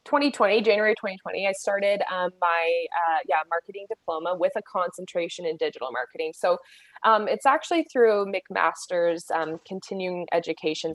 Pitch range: 165-220 Hz